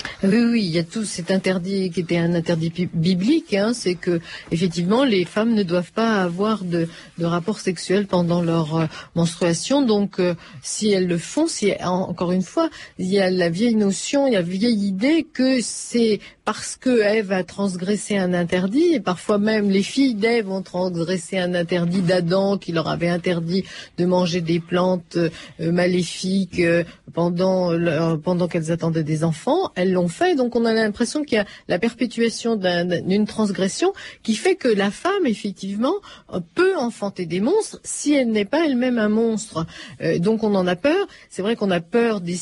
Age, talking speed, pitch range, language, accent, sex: 40-59, 190 wpm, 175-225 Hz, French, French, female